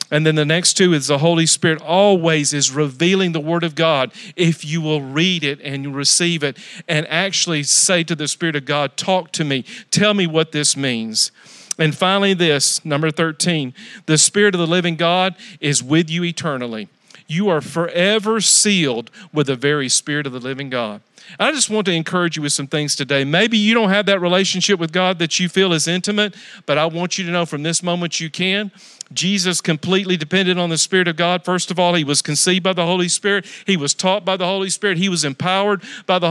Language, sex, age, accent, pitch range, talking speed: English, male, 50-69, American, 155-190 Hz, 220 wpm